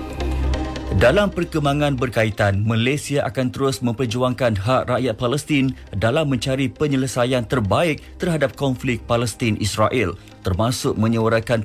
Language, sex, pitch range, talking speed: English, male, 110-130 Hz, 100 wpm